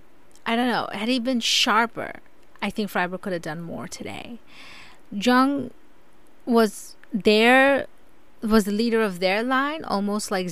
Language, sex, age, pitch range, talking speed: English, female, 20-39, 190-245 Hz, 150 wpm